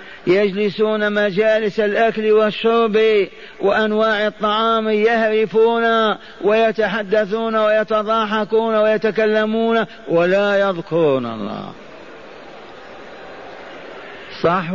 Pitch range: 200-220 Hz